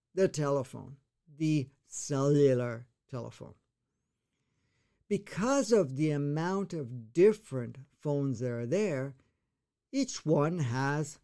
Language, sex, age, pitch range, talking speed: English, male, 50-69, 135-185 Hz, 95 wpm